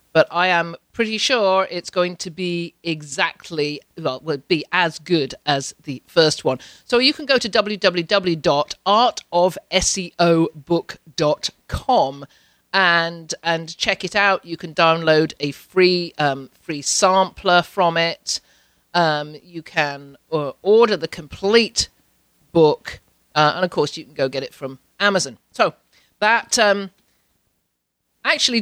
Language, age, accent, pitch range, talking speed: English, 50-69, British, 155-220 Hz, 135 wpm